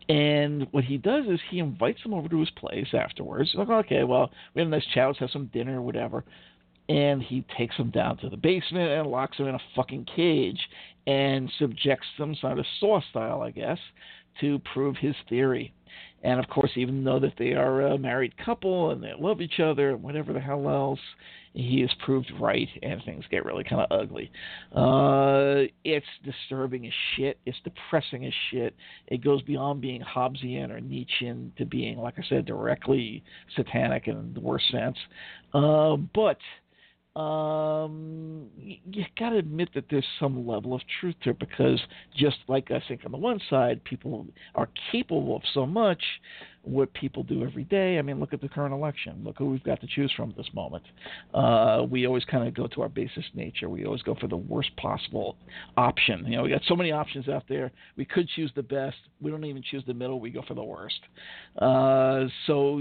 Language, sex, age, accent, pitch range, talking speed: English, male, 50-69, American, 130-155 Hz, 200 wpm